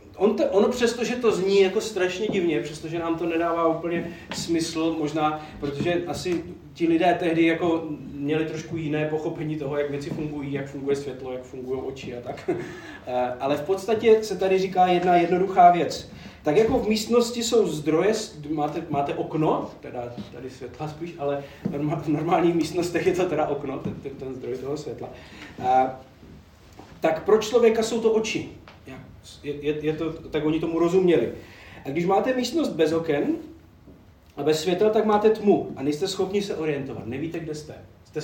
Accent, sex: native, male